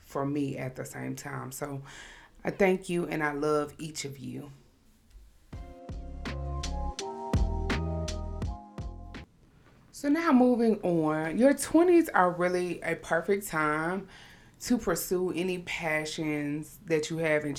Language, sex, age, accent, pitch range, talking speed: English, female, 30-49, American, 145-195 Hz, 120 wpm